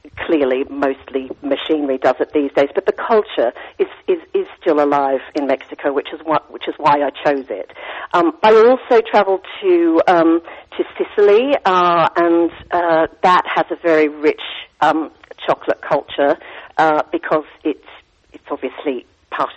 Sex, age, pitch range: female, 50-69, 145-180 Hz